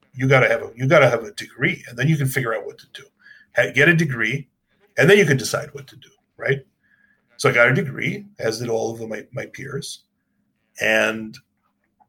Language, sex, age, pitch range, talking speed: English, male, 40-59, 120-150 Hz, 215 wpm